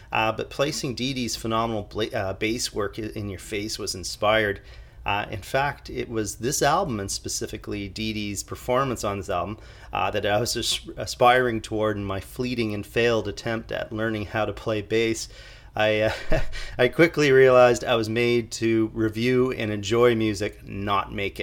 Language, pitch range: English, 100-115 Hz